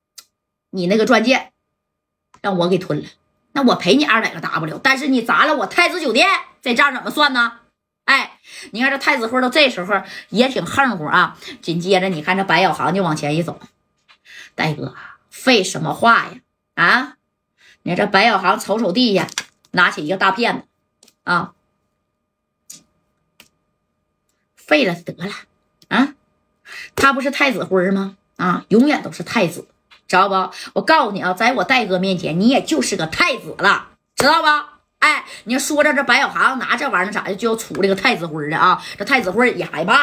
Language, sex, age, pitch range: Chinese, female, 20-39, 195-285 Hz